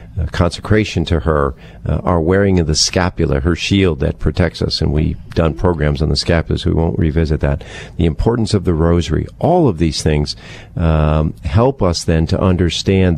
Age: 50-69